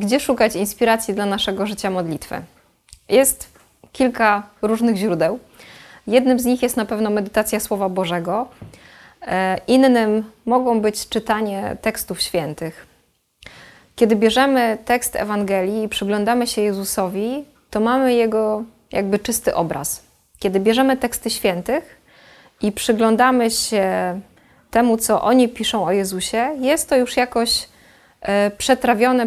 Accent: native